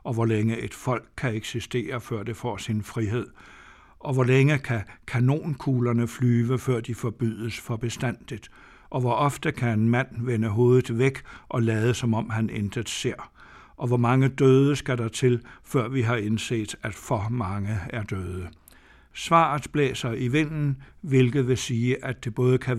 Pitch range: 110-130 Hz